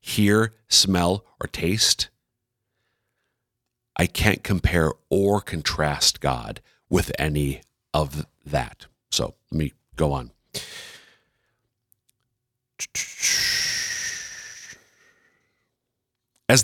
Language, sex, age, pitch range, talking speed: English, male, 50-69, 90-135 Hz, 70 wpm